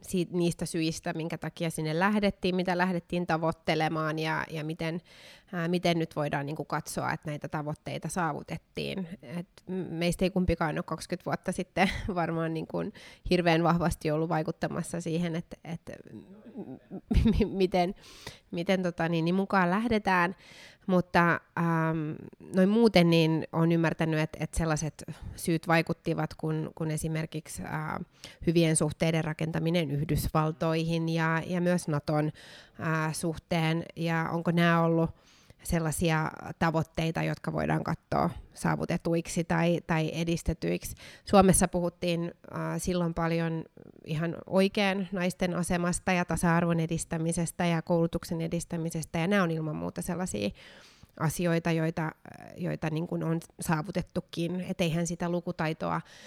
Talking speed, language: 115 wpm, Finnish